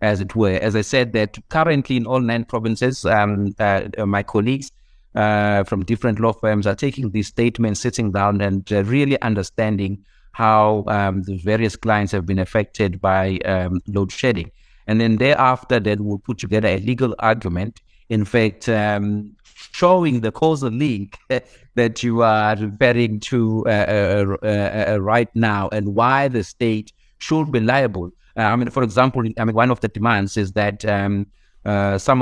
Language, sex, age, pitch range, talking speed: English, male, 60-79, 100-120 Hz, 175 wpm